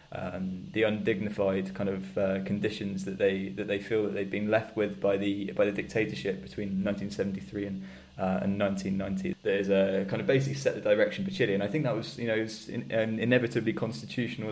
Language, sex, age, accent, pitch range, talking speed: English, male, 20-39, British, 100-110 Hz, 205 wpm